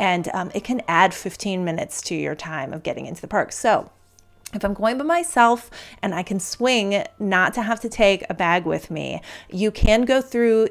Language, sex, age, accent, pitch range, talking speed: English, female, 30-49, American, 180-225 Hz, 215 wpm